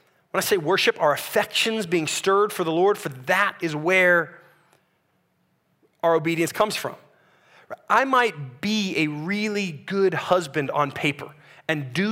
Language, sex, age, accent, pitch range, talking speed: English, male, 30-49, American, 155-215 Hz, 150 wpm